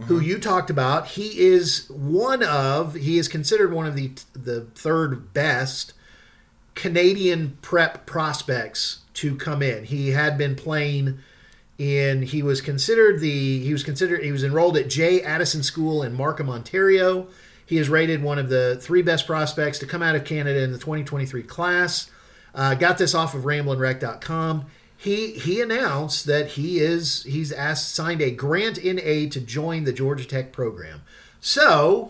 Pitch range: 135-170 Hz